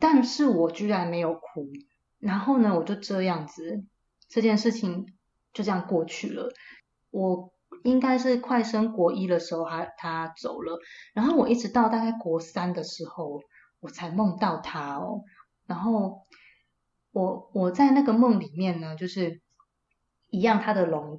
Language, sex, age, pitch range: Chinese, female, 20-39, 170-215 Hz